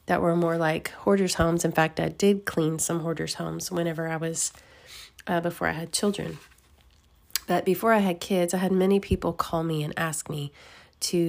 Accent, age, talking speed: American, 30-49, 195 wpm